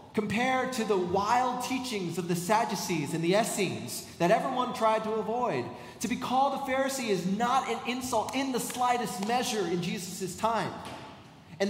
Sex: male